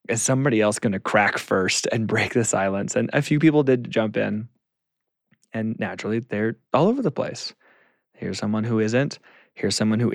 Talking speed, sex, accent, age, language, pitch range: 190 wpm, male, American, 20-39, English, 105-120 Hz